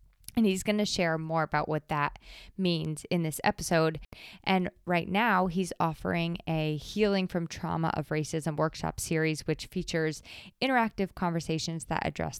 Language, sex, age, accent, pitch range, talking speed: English, female, 20-39, American, 160-190 Hz, 155 wpm